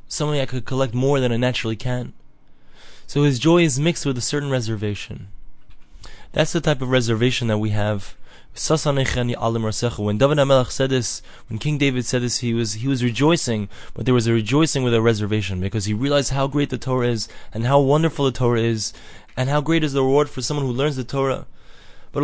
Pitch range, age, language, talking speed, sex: 120-145 Hz, 20-39, English, 205 wpm, male